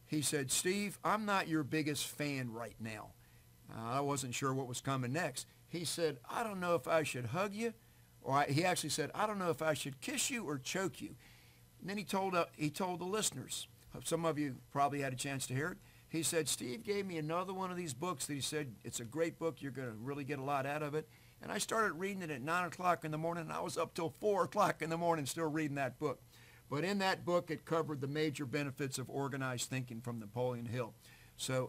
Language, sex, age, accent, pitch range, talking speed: English, male, 50-69, American, 125-160 Hz, 250 wpm